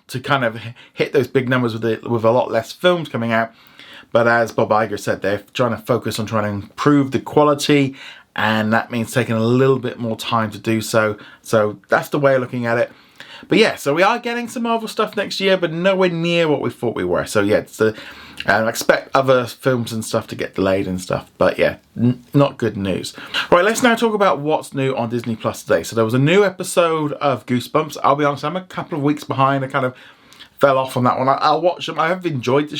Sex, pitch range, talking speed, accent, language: male, 115-155 Hz, 245 wpm, British, English